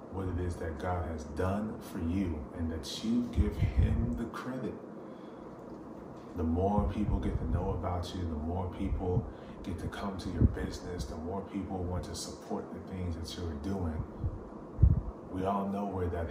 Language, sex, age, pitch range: English, male, 30-49, 85-105 Hz